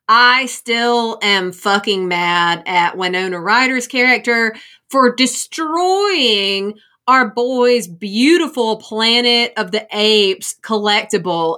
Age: 30-49